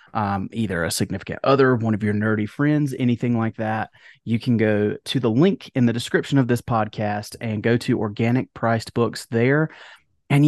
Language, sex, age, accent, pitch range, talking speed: English, male, 30-49, American, 110-135 Hz, 190 wpm